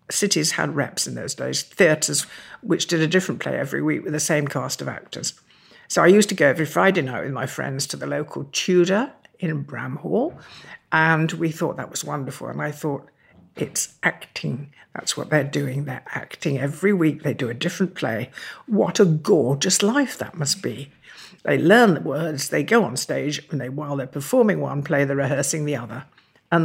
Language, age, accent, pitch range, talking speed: English, 60-79, British, 145-200 Hz, 200 wpm